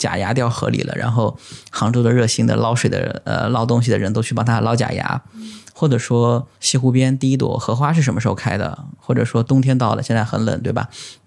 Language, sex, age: Chinese, male, 20-39